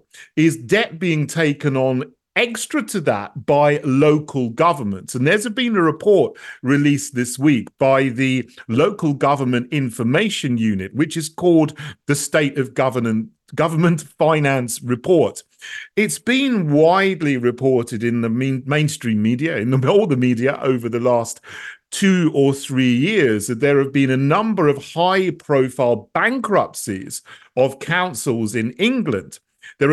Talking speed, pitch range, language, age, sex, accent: 135 wpm, 125-165 Hz, English, 40-59, male, British